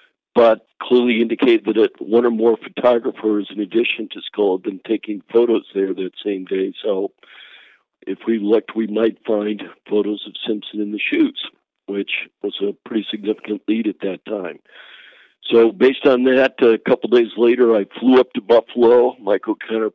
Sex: male